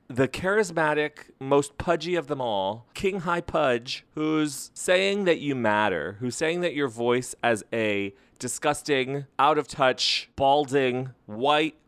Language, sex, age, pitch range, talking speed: English, male, 30-49, 120-165 Hz, 140 wpm